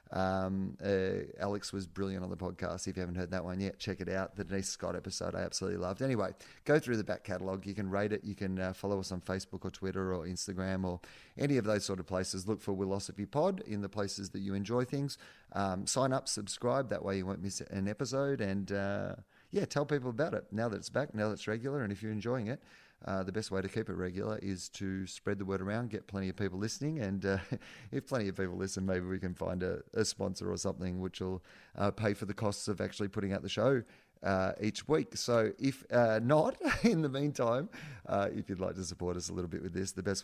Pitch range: 95-110 Hz